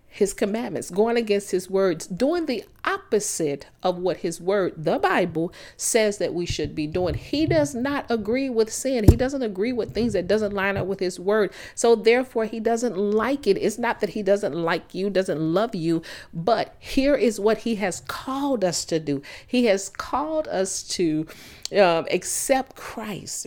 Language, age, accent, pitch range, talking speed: English, 40-59, American, 170-230 Hz, 185 wpm